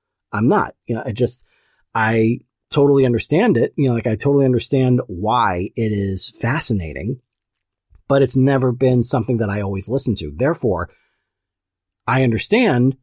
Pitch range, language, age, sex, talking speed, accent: 105-130 Hz, English, 40-59, male, 150 wpm, American